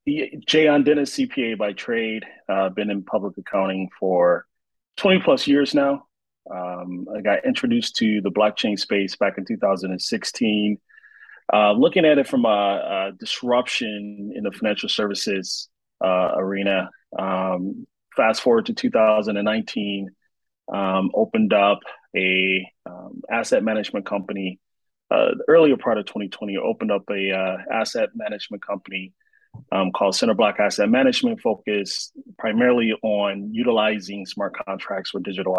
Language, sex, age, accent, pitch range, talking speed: English, male, 30-49, American, 95-125 Hz, 135 wpm